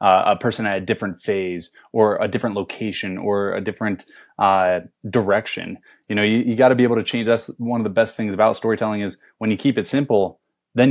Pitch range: 95-125 Hz